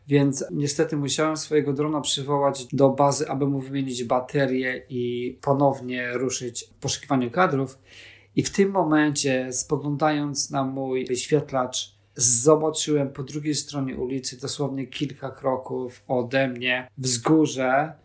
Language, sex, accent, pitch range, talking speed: Polish, male, native, 130-145 Hz, 125 wpm